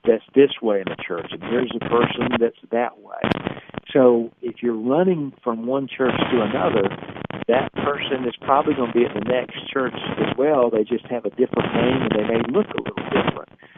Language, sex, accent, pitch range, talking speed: English, male, American, 110-125 Hz, 210 wpm